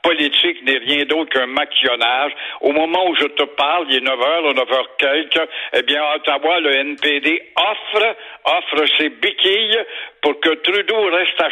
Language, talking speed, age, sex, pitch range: French, 160 wpm, 70-89, male, 145-195 Hz